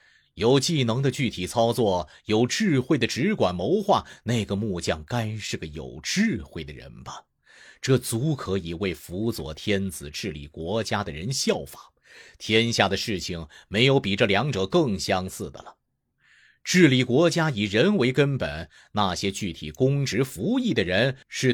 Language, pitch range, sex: Chinese, 95-145 Hz, male